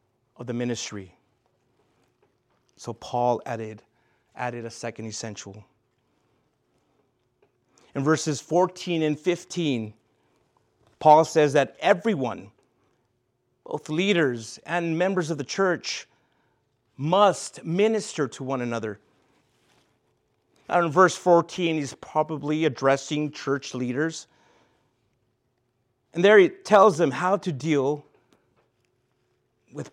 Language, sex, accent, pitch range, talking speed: English, male, American, 120-155 Hz, 100 wpm